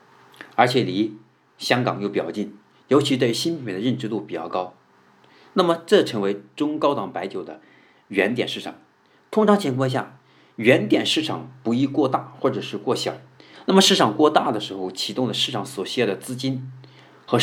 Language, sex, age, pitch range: Chinese, male, 50-69, 100-135 Hz